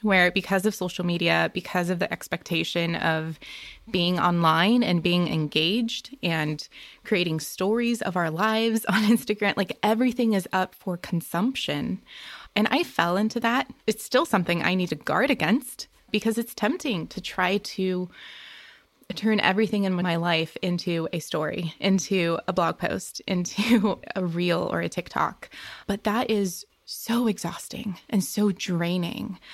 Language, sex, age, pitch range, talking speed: English, female, 20-39, 175-210 Hz, 150 wpm